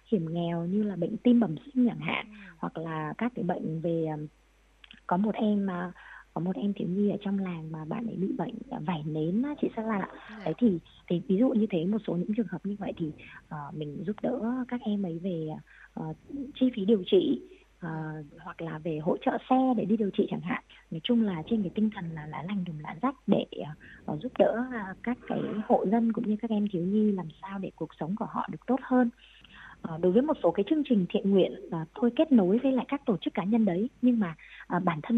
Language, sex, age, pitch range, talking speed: Vietnamese, female, 20-39, 170-235 Hz, 230 wpm